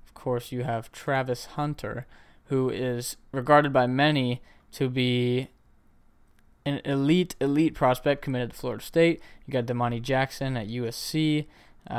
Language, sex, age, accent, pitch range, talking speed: English, male, 20-39, American, 120-145 Hz, 130 wpm